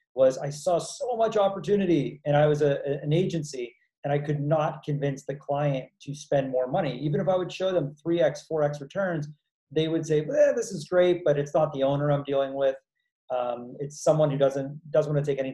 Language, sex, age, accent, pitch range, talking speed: English, male, 30-49, American, 130-150 Hz, 225 wpm